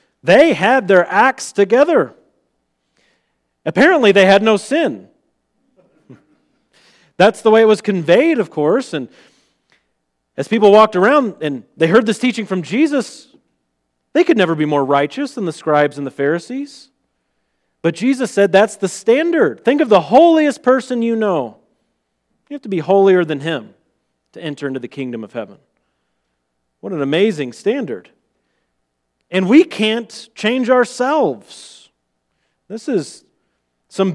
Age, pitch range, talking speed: 40-59, 145-240 Hz, 140 wpm